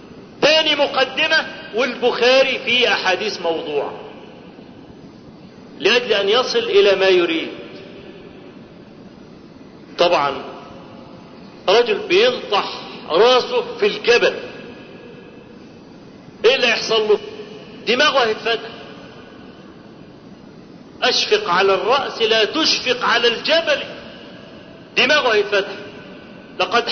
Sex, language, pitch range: male, Arabic, 235-355 Hz